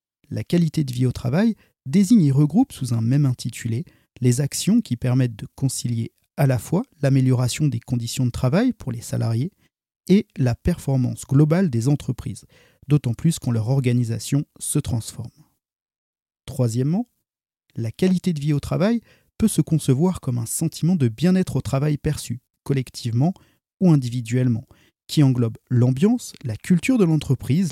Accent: French